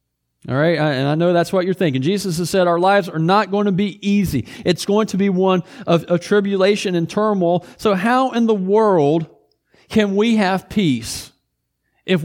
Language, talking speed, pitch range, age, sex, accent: English, 195 wpm, 155-200 Hz, 40-59, male, American